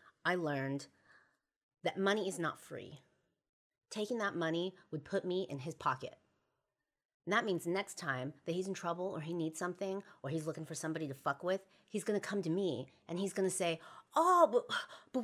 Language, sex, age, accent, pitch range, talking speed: English, female, 30-49, American, 170-275 Hz, 195 wpm